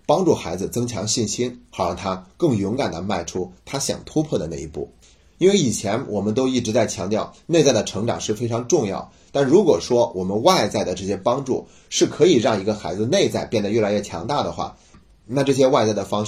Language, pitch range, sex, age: Chinese, 100-120 Hz, male, 30-49